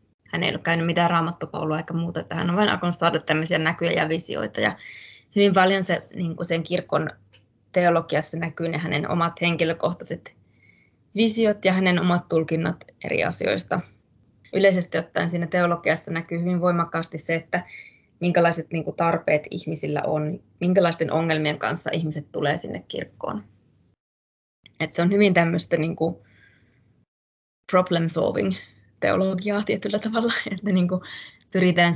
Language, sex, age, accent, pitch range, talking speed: Finnish, female, 20-39, native, 155-180 Hz, 135 wpm